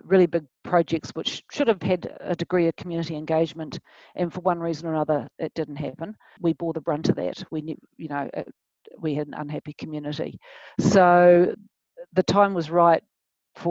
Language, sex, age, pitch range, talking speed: English, female, 50-69, 155-175 Hz, 190 wpm